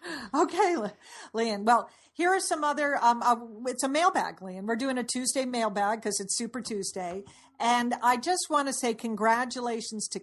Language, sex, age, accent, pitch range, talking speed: English, female, 50-69, American, 195-245 Hz, 175 wpm